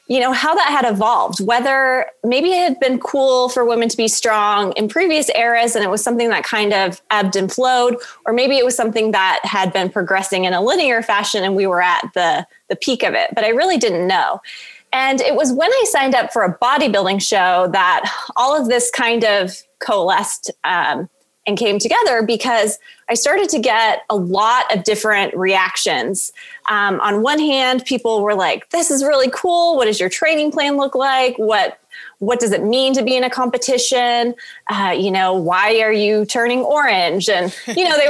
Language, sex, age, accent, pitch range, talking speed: English, female, 20-39, American, 205-270 Hz, 205 wpm